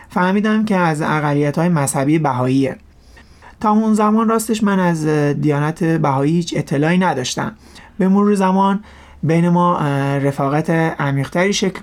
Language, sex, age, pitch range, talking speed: Persian, male, 30-49, 135-175 Hz, 125 wpm